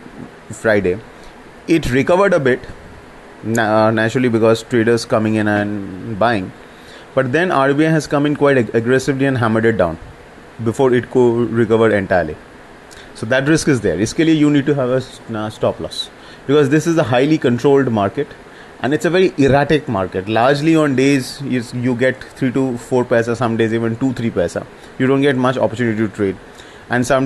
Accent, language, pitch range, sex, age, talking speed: Indian, English, 105-130 Hz, male, 30-49, 170 wpm